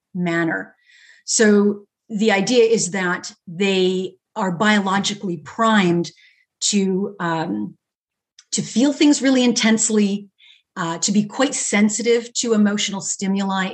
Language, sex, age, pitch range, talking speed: English, female, 30-49, 185-230 Hz, 110 wpm